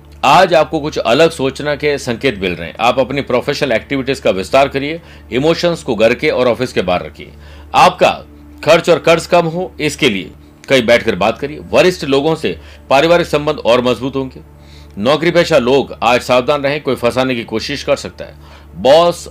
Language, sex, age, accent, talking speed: Hindi, male, 50-69, native, 185 wpm